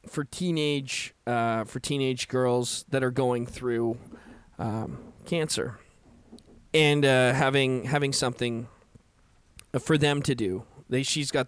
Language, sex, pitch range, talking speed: English, male, 120-140 Hz, 125 wpm